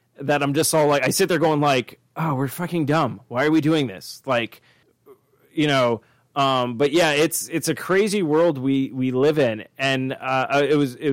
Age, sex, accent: 30-49, male, American